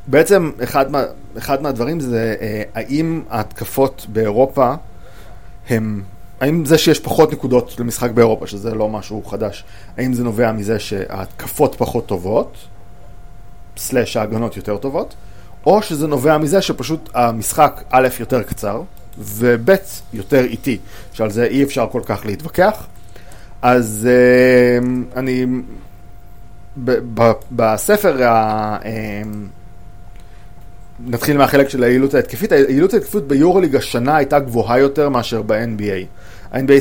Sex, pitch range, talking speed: male, 105-135 Hz, 125 wpm